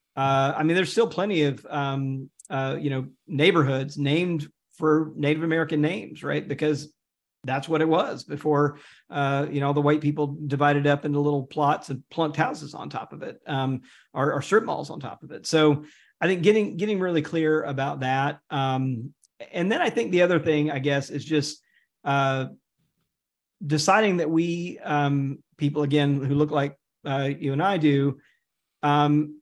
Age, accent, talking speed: 40-59, American, 180 wpm